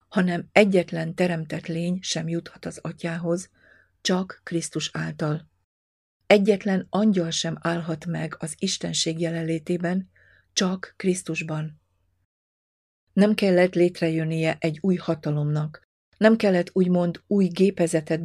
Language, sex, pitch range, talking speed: Hungarian, female, 155-180 Hz, 105 wpm